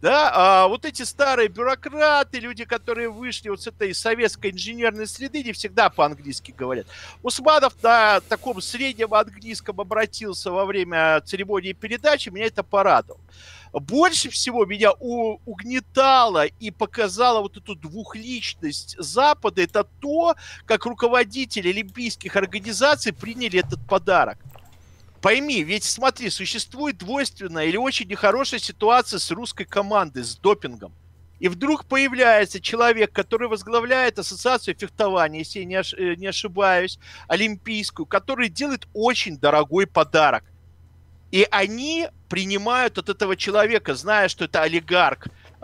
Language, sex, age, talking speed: Russian, male, 50-69, 120 wpm